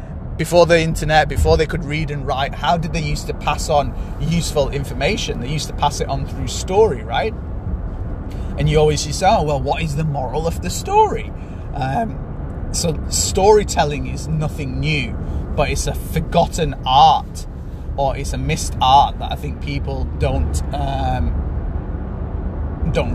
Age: 30-49